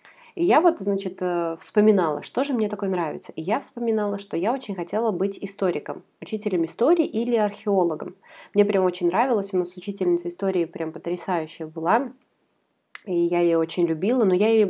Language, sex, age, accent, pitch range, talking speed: Russian, female, 20-39, native, 175-210 Hz, 170 wpm